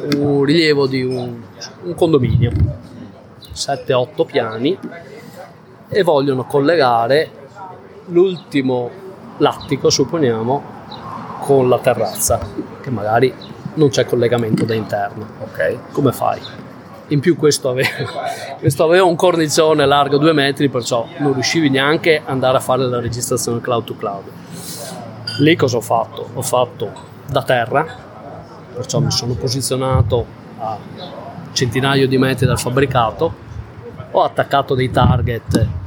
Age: 30-49